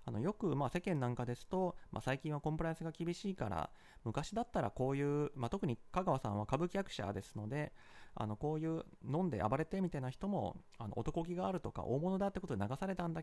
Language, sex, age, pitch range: Japanese, male, 30-49, 120-195 Hz